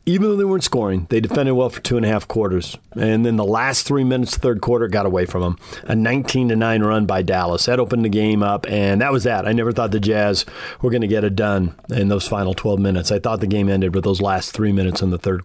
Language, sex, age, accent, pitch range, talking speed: English, male, 40-59, American, 105-135 Hz, 280 wpm